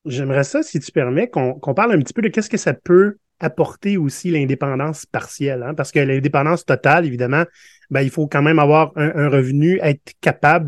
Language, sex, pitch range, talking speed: French, male, 130-160 Hz, 210 wpm